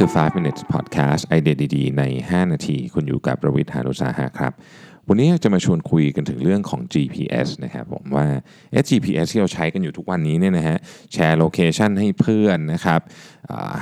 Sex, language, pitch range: male, Thai, 75-105 Hz